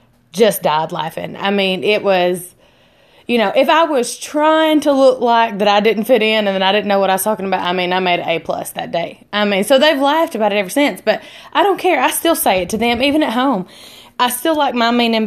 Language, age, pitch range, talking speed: English, 20-39, 190-245 Hz, 265 wpm